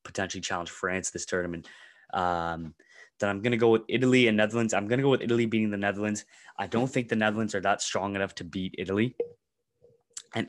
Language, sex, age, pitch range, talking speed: English, male, 20-39, 90-115 Hz, 200 wpm